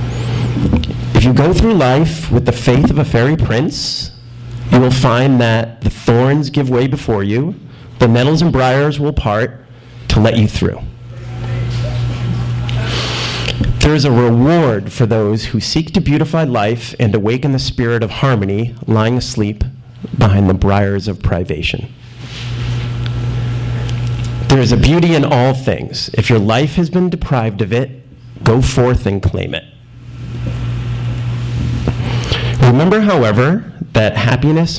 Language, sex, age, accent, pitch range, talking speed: English, male, 40-59, American, 115-130 Hz, 140 wpm